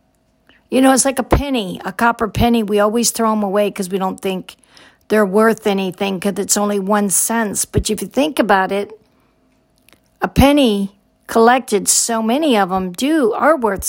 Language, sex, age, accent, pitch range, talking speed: English, female, 50-69, American, 200-255 Hz, 180 wpm